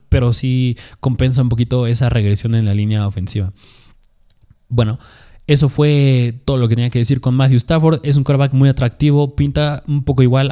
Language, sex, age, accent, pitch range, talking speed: Spanish, male, 20-39, Mexican, 120-150 Hz, 185 wpm